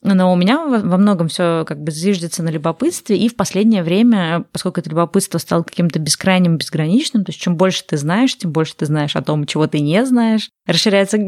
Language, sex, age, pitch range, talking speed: Russian, female, 20-39, 165-195 Hz, 205 wpm